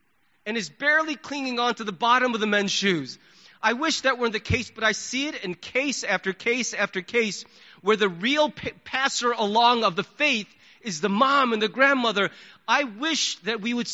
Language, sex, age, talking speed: English, male, 30-49, 200 wpm